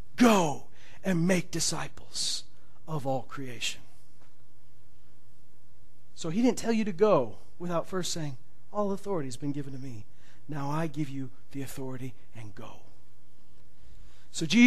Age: 40-59